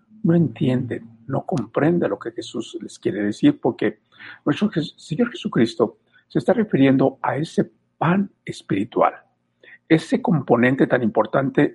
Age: 60-79